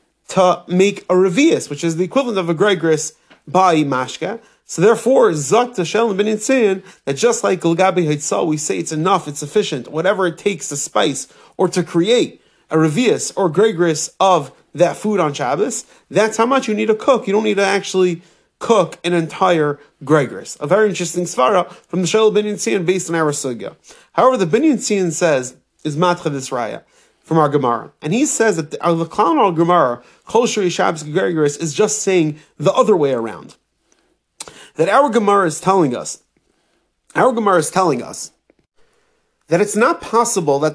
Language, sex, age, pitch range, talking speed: English, male, 30-49, 160-210 Hz, 180 wpm